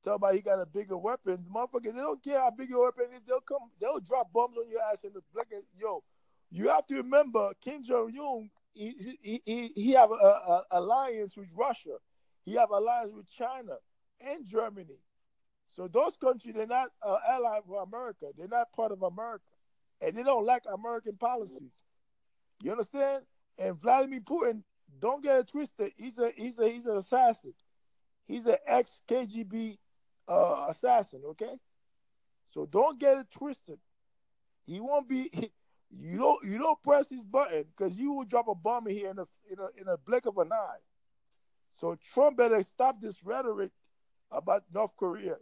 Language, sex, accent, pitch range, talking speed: English, male, American, 210-280 Hz, 180 wpm